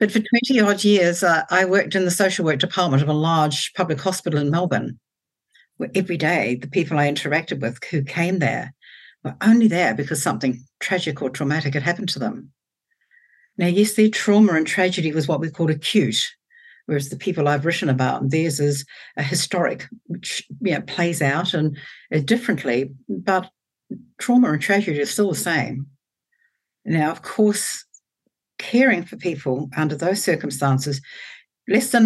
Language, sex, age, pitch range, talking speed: English, female, 60-79, 150-200 Hz, 165 wpm